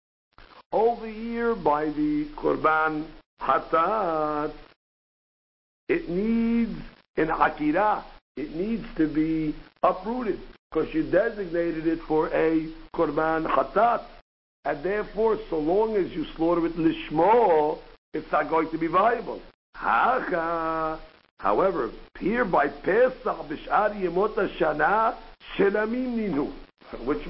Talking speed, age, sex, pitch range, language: 95 wpm, 60-79, male, 165-230 Hz, English